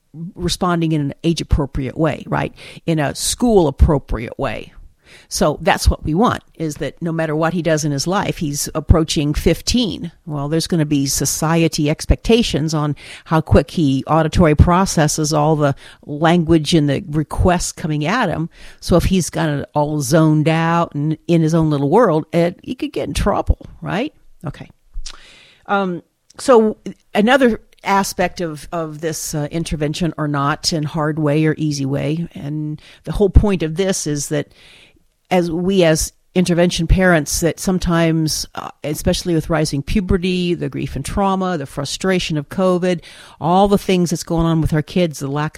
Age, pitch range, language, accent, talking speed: 50-69, 150-180 Hz, English, American, 165 wpm